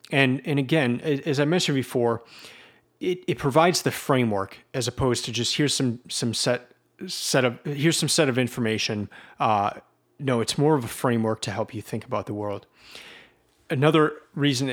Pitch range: 115-140 Hz